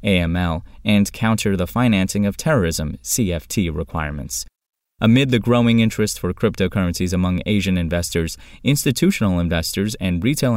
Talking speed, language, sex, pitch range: 125 wpm, English, male, 90-115 Hz